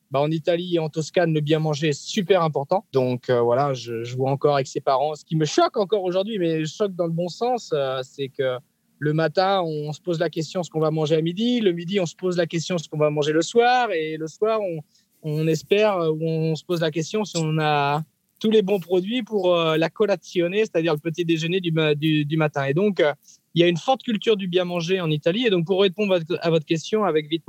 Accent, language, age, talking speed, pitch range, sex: French, French, 20-39, 260 wpm, 150-185 Hz, male